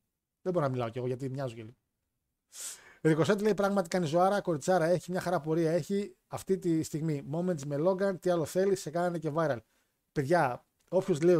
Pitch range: 135-185 Hz